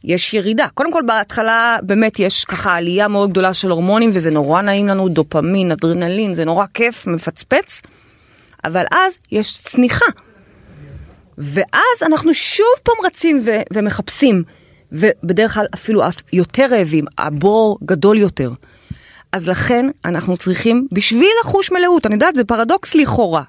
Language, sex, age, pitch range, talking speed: Hebrew, female, 30-49, 180-270 Hz, 140 wpm